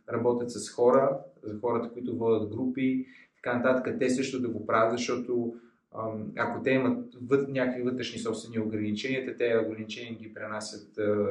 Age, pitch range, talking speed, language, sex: 20-39, 110-125 Hz, 150 wpm, Bulgarian, male